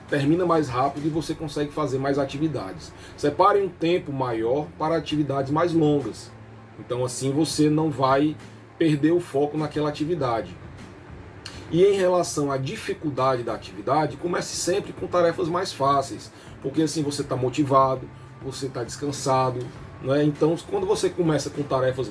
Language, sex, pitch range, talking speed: Portuguese, male, 130-170 Hz, 150 wpm